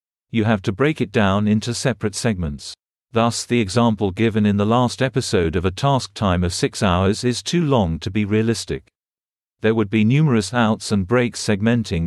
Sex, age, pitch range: male, 50-69, 100-125 Hz